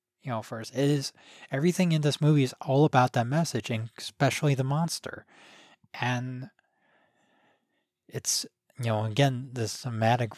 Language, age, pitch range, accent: English, 20-39, 110-135 Hz, American